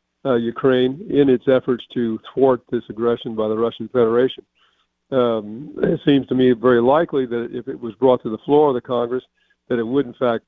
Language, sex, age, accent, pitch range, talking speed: English, male, 50-69, American, 115-135 Hz, 205 wpm